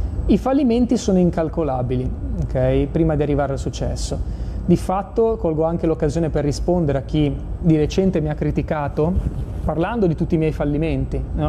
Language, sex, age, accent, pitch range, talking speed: Italian, male, 30-49, native, 145-180 Hz, 150 wpm